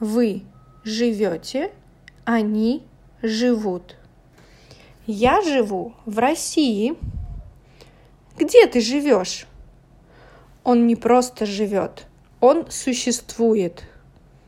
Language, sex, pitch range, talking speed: English, female, 210-255 Hz, 70 wpm